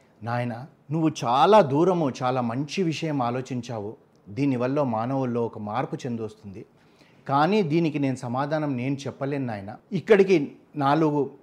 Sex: male